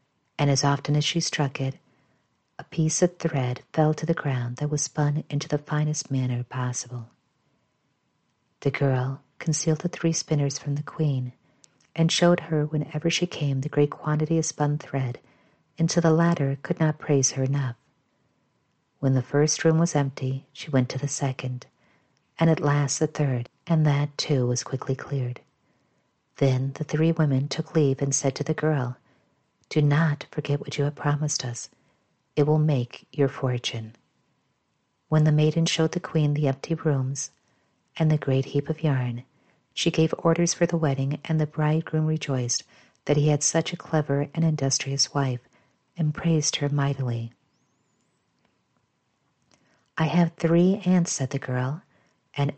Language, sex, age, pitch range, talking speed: English, female, 50-69, 135-155 Hz, 165 wpm